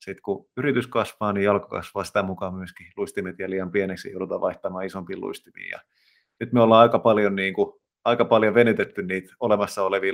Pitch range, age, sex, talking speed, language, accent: 95-115 Hz, 30-49, male, 180 wpm, Finnish, native